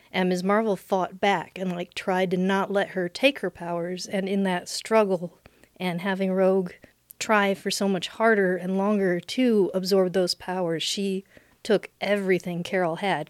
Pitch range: 180-200 Hz